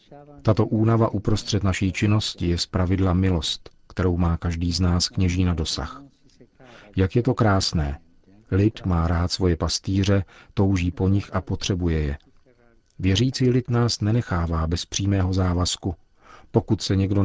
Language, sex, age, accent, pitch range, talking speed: Czech, male, 40-59, native, 85-100 Hz, 145 wpm